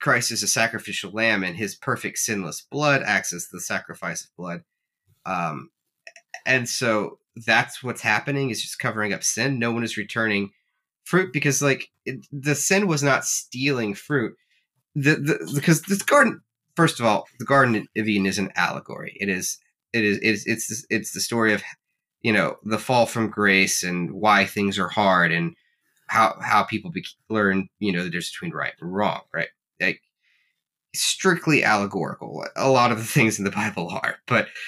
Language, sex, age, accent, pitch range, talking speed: English, male, 30-49, American, 95-120 Hz, 185 wpm